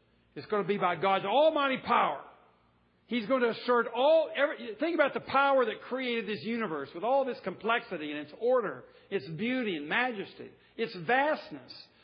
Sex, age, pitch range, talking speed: male, 50-69, 195-280 Hz, 170 wpm